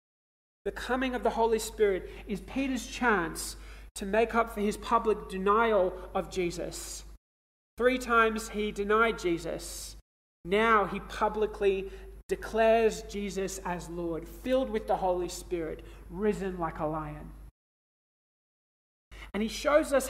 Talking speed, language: 130 wpm, English